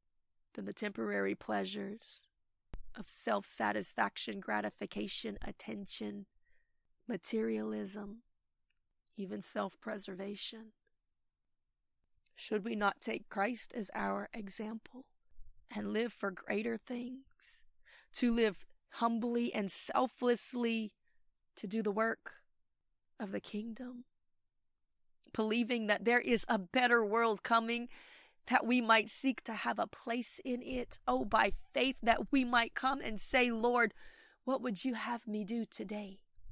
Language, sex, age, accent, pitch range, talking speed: English, female, 20-39, American, 210-245 Hz, 115 wpm